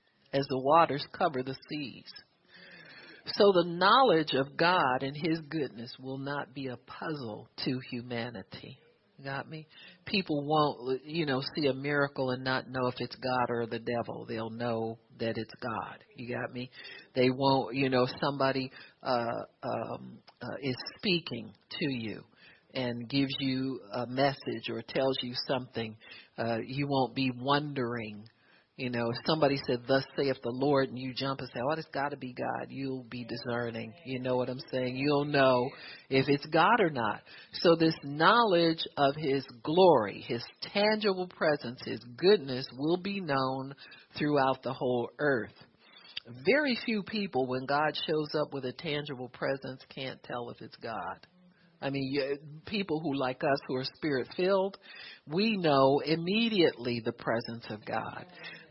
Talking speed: 165 wpm